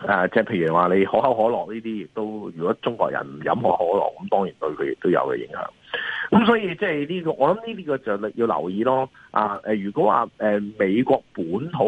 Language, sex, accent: Chinese, male, native